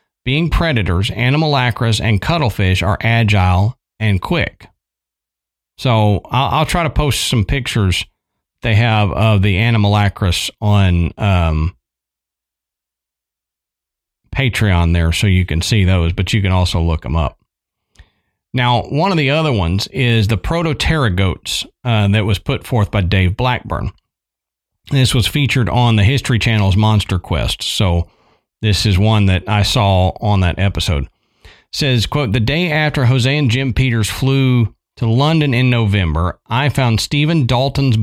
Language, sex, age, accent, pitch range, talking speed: English, male, 40-59, American, 95-130 Hz, 150 wpm